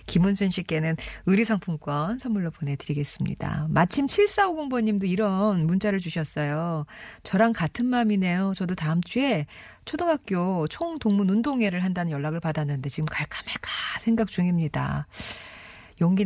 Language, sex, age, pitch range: Korean, female, 40-59, 160-220 Hz